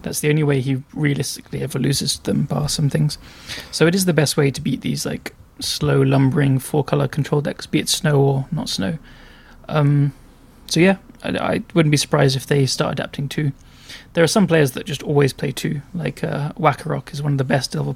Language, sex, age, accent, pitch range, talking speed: English, male, 20-39, British, 140-155 Hz, 215 wpm